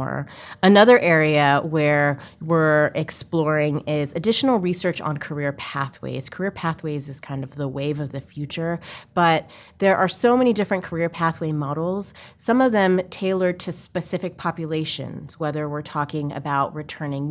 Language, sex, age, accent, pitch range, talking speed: English, female, 30-49, American, 140-165 Hz, 145 wpm